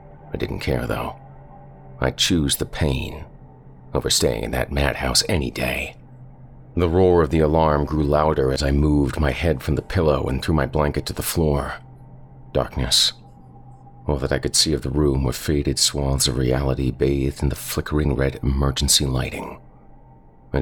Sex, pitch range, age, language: male, 70-90 Hz, 40-59, English